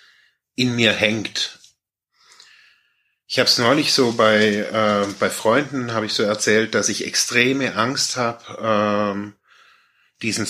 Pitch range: 100-120 Hz